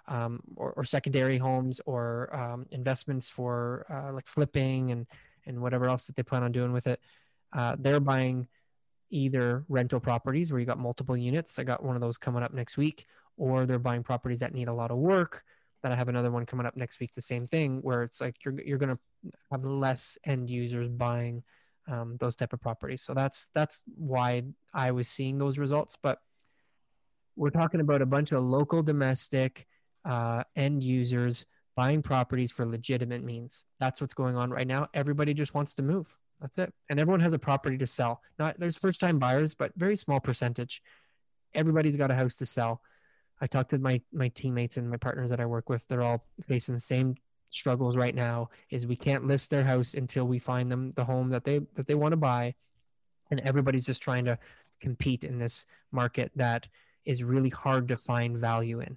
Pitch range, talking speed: 120-140 Hz, 200 wpm